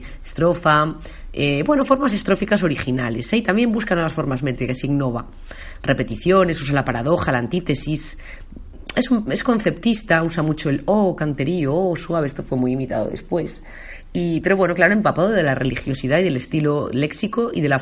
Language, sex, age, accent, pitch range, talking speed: Spanish, female, 30-49, Spanish, 130-175 Hz, 180 wpm